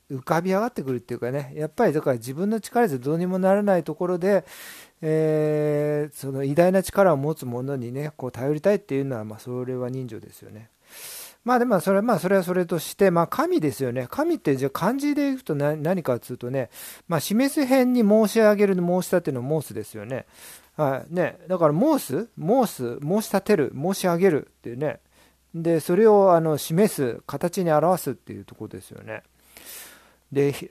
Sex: male